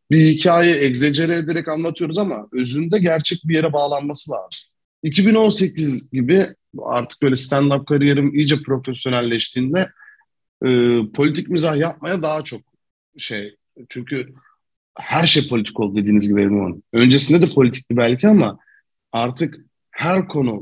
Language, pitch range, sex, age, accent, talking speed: Turkish, 125-170 Hz, male, 40-59, native, 130 wpm